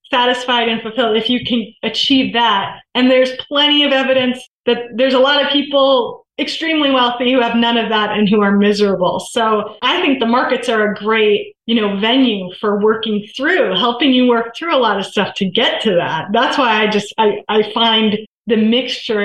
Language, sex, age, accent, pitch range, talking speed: English, female, 30-49, American, 215-255 Hz, 205 wpm